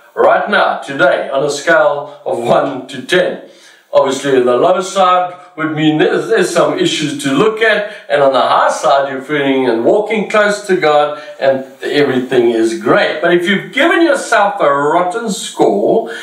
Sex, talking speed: male, 175 wpm